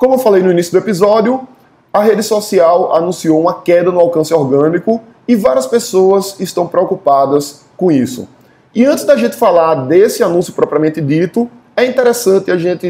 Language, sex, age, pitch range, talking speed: Portuguese, male, 20-39, 155-210 Hz, 165 wpm